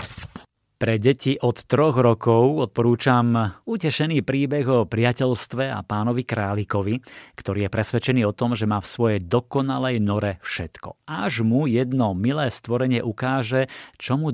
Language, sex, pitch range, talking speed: Slovak, male, 105-130 Hz, 140 wpm